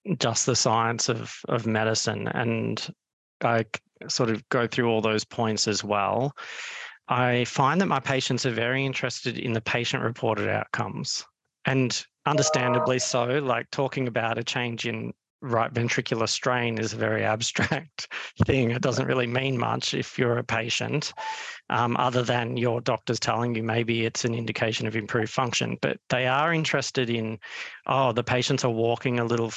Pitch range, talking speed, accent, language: 115-135 Hz, 165 wpm, Australian, English